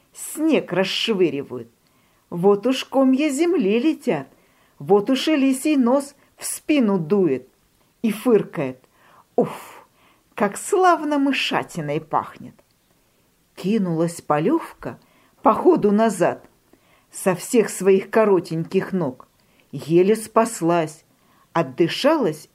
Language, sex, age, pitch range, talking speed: Russian, female, 50-69, 165-255 Hz, 95 wpm